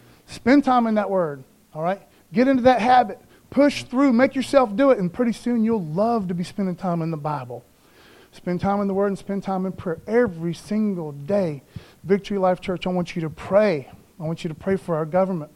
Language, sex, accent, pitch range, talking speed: English, male, American, 170-220 Hz, 225 wpm